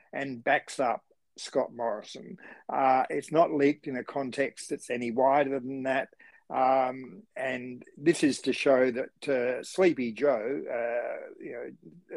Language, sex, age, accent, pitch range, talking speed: English, male, 50-69, Australian, 120-140 Hz, 150 wpm